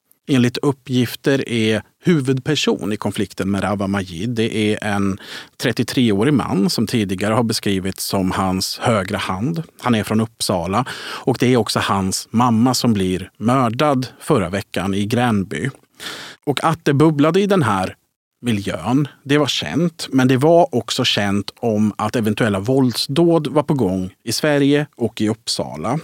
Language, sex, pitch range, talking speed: Swedish, male, 105-135 Hz, 155 wpm